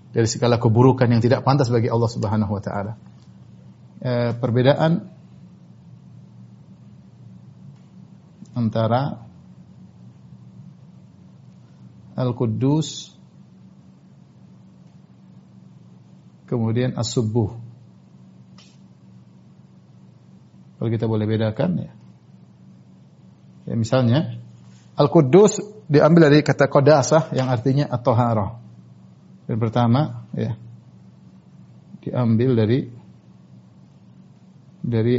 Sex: male